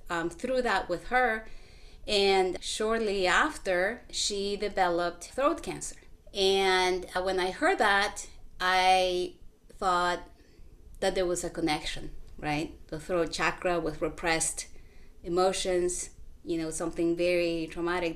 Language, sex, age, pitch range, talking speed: English, female, 30-49, 165-195 Hz, 120 wpm